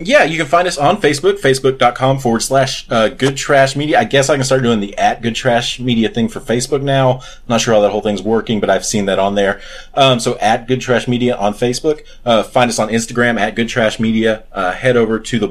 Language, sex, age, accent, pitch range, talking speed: English, male, 30-49, American, 110-135 Hz, 250 wpm